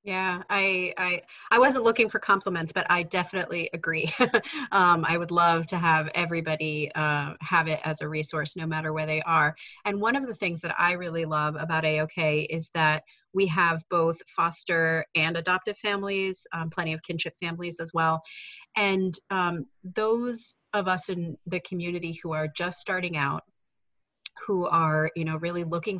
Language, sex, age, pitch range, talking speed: English, female, 30-49, 160-185 Hz, 175 wpm